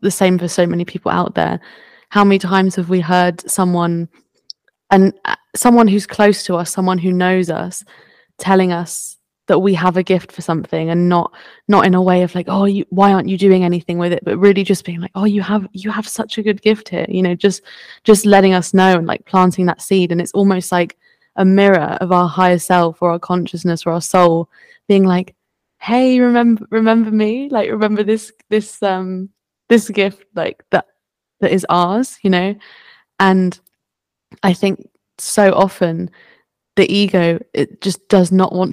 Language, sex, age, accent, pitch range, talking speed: English, female, 20-39, British, 180-205 Hz, 195 wpm